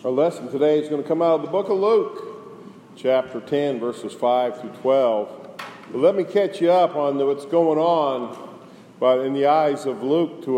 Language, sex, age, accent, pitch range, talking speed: English, male, 50-69, American, 145-210 Hz, 210 wpm